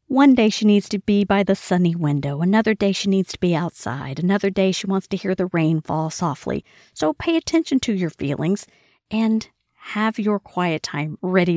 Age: 40-59